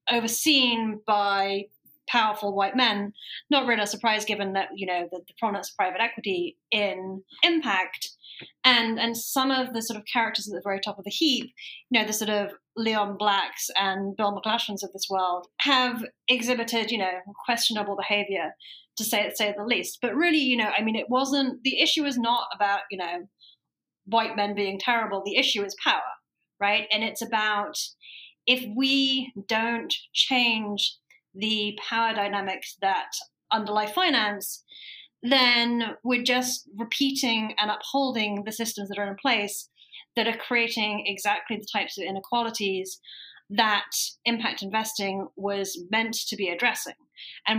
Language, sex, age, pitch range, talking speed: English, female, 30-49, 200-240 Hz, 160 wpm